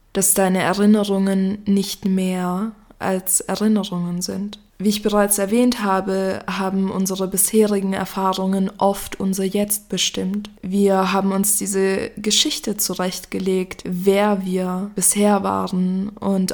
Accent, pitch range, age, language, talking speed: German, 190-210 Hz, 20-39, German, 115 wpm